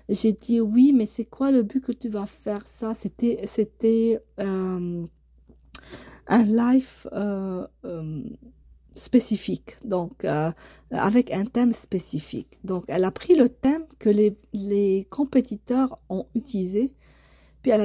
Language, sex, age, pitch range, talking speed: French, female, 40-59, 190-245 Hz, 135 wpm